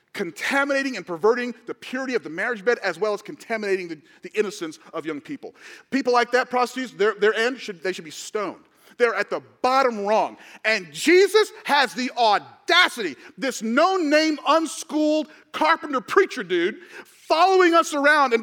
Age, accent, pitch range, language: 40-59, American, 215-310 Hz, English